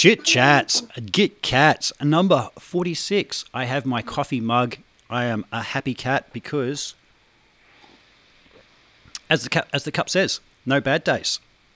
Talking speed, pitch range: 140 wpm, 135-180 Hz